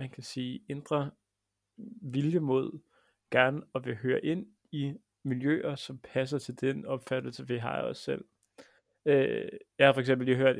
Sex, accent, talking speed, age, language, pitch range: male, native, 160 wpm, 30-49, Danish, 125-155 Hz